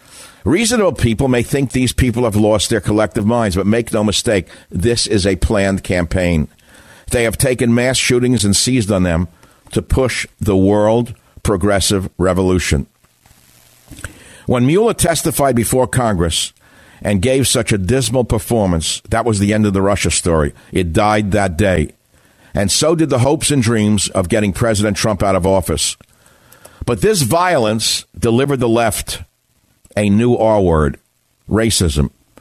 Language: English